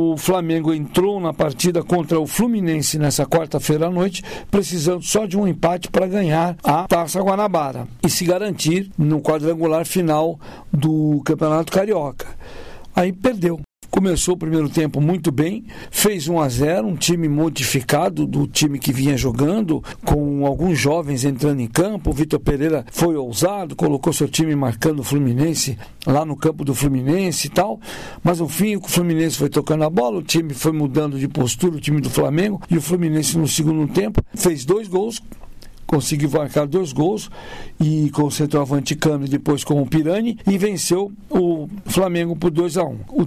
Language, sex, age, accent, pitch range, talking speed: Portuguese, male, 60-79, Brazilian, 145-180 Hz, 165 wpm